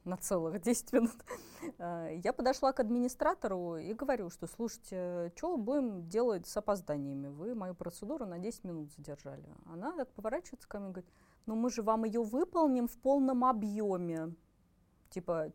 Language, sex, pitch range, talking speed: Russian, female, 165-230 Hz, 160 wpm